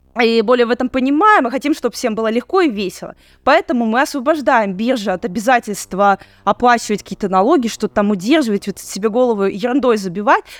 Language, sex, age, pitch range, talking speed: Russian, female, 20-39, 200-255 Hz, 170 wpm